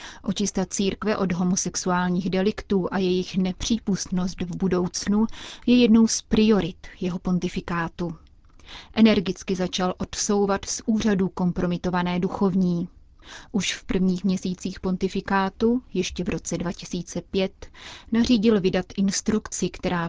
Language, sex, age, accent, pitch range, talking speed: Czech, female, 30-49, native, 180-200 Hz, 110 wpm